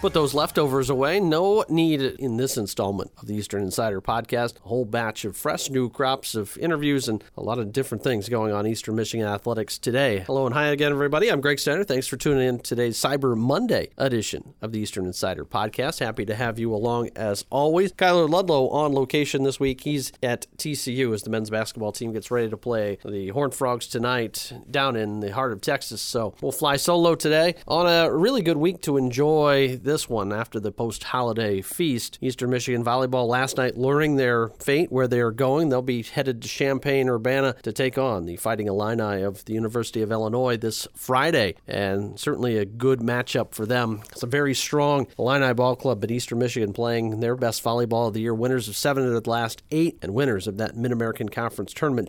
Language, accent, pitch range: English, American, 110-135 Hz